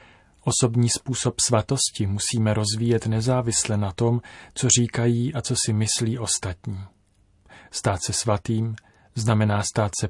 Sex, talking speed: male, 125 wpm